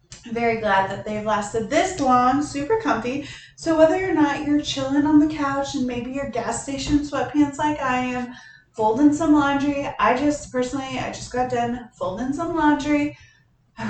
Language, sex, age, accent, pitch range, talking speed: English, female, 20-39, American, 210-275 Hz, 175 wpm